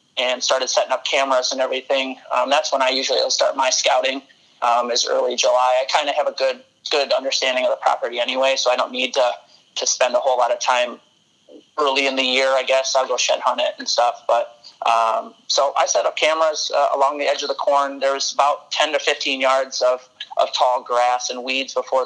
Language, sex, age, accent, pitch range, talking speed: English, male, 30-49, American, 125-145 Hz, 230 wpm